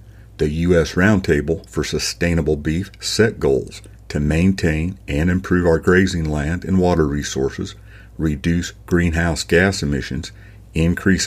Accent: American